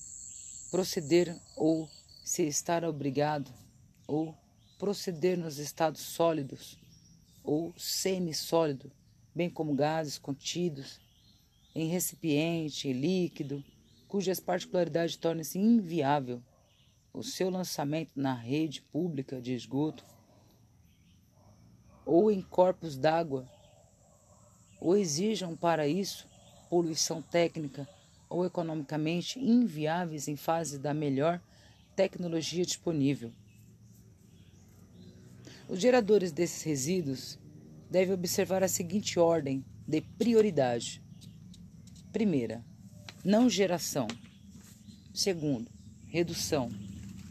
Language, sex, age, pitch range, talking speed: Portuguese, female, 40-59, 115-175 Hz, 85 wpm